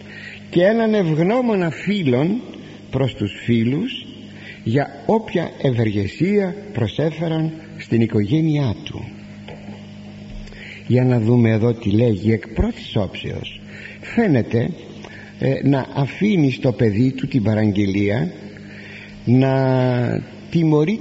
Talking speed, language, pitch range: 95 wpm, Greek, 105-150 Hz